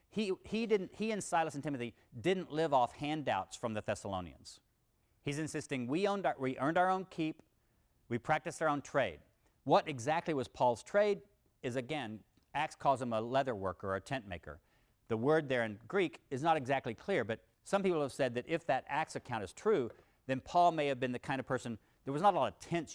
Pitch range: 115-155 Hz